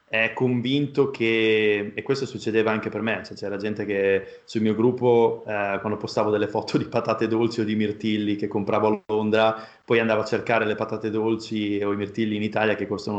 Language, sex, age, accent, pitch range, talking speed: Italian, male, 30-49, native, 110-125 Hz, 205 wpm